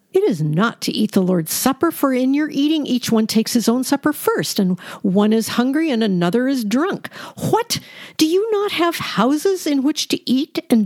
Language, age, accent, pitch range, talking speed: English, 50-69, American, 200-285 Hz, 210 wpm